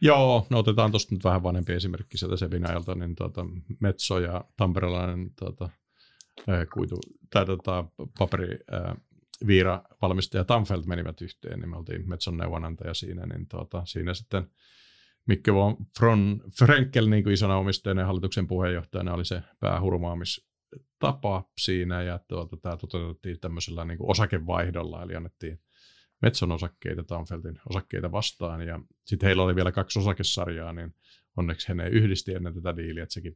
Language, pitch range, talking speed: Finnish, 90-100 Hz, 140 wpm